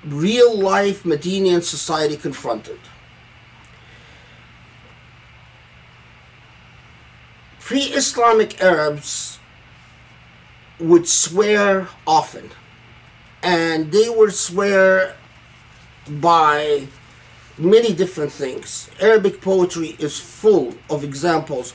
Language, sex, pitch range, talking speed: English, male, 135-180 Hz, 65 wpm